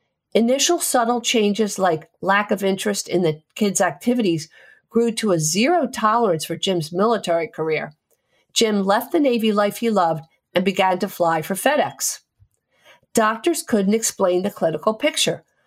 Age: 50-69